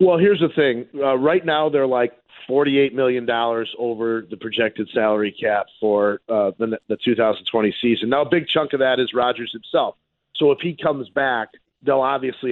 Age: 40-59